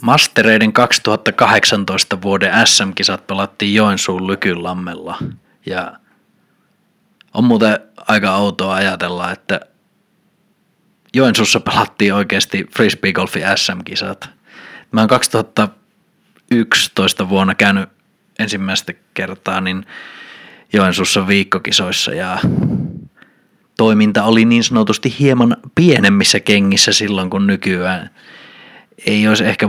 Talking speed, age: 85 wpm, 20-39